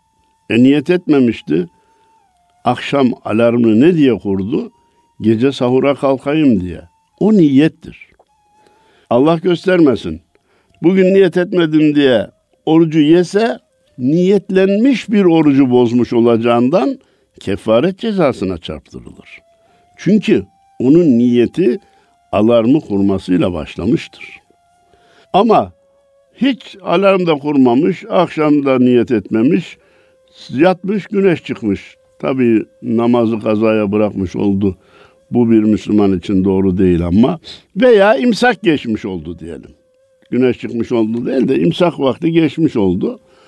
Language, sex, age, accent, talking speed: Turkish, male, 60-79, native, 100 wpm